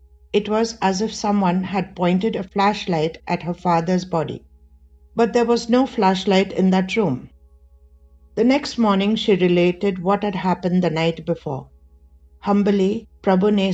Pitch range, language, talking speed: 160-205 Hz, English, 150 wpm